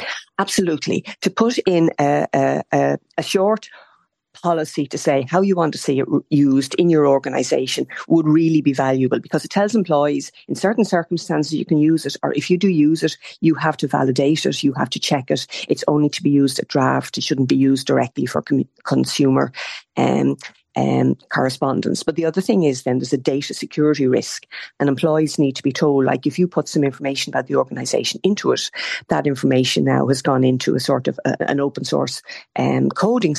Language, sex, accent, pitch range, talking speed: English, female, Irish, 135-165 Hz, 205 wpm